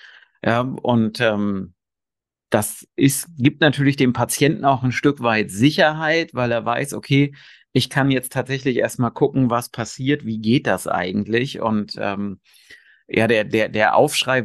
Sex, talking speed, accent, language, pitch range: male, 155 wpm, German, German, 115-145 Hz